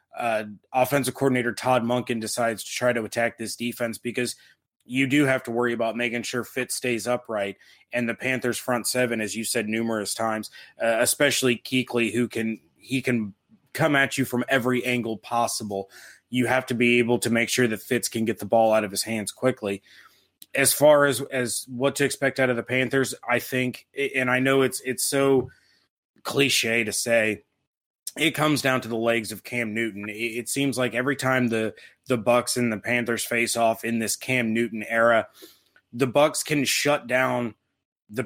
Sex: male